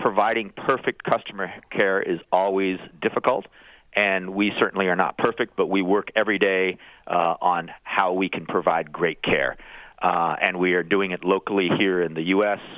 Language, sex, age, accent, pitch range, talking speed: English, male, 40-59, American, 85-100 Hz, 175 wpm